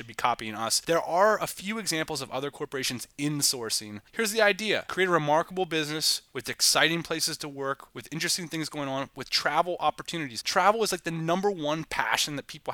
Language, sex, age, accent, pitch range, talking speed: English, male, 20-39, American, 150-200 Hz, 200 wpm